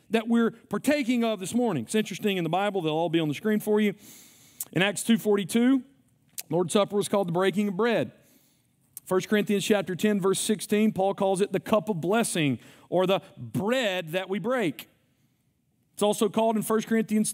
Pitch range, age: 190-235 Hz, 40-59